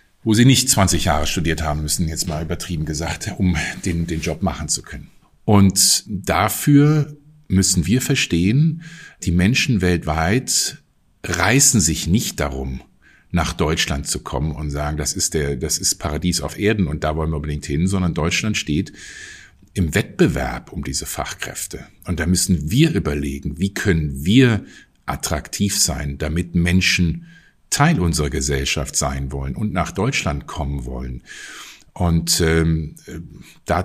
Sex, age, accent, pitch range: male, 50-69, German, 80-100 Hz